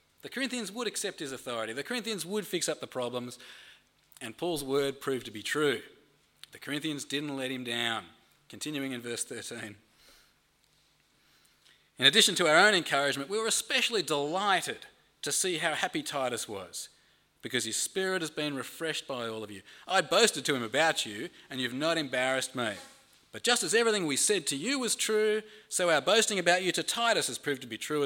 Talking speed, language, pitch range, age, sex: 190 wpm, English, 120-185 Hz, 30-49, male